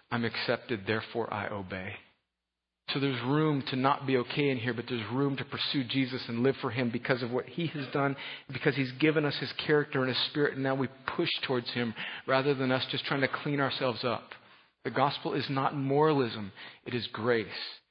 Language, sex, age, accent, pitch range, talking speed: English, male, 40-59, American, 110-140 Hz, 210 wpm